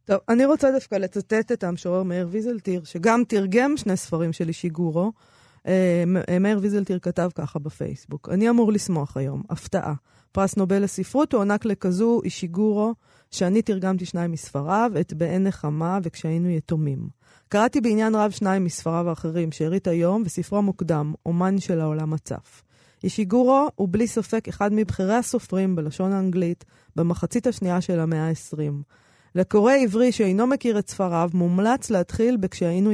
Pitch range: 170-215 Hz